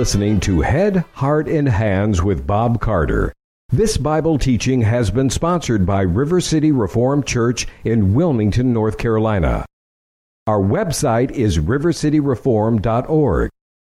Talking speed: 120 wpm